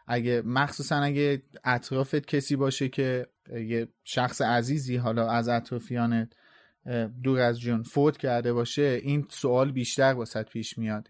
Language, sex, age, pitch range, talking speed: Persian, male, 30-49, 120-145 Hz, 135 wpm